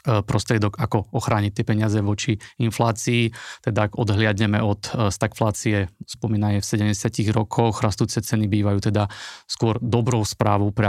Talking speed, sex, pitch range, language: 125 wpm, male, 105-115 Hz, Slovak